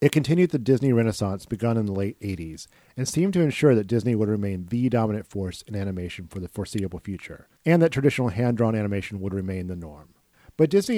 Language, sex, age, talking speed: English, male, 40-59, 210 wpm